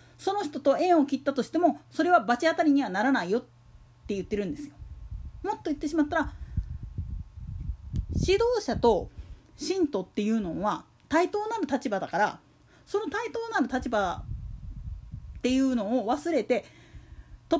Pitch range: 190-315 Hz